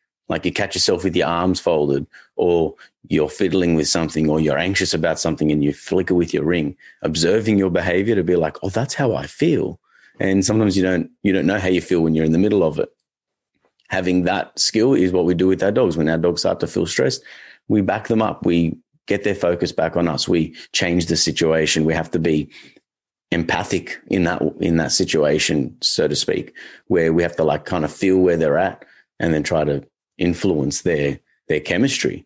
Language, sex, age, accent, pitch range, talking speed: English, male, 30-49, Australian, 80-95 Hz, 215 wpm